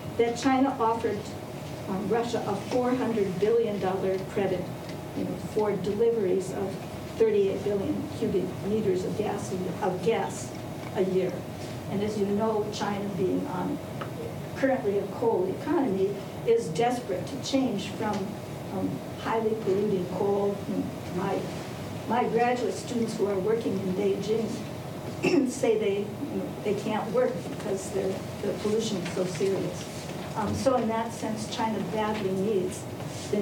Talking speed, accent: 140 wpm, American